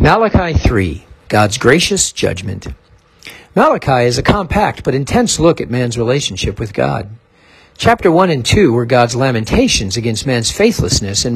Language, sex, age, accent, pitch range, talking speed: English, male, 50-69, American, 110-160 Hz, 150 wpm